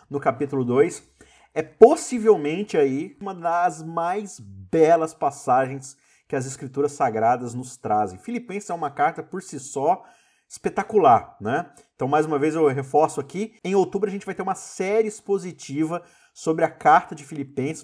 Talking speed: 160 wpm